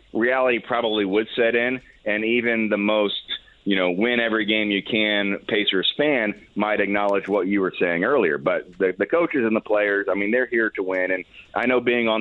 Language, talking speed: English, 190 wpm